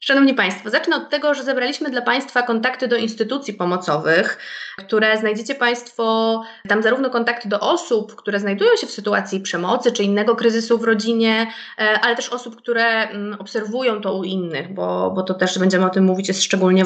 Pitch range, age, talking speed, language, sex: 195-240 Hz, 20-39, 180 wpm, Polish, female